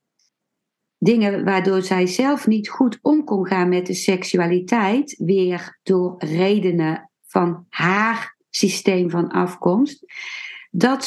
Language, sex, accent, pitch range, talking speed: Dutch, female, Dutch, 185-225 Hz, 115 wpm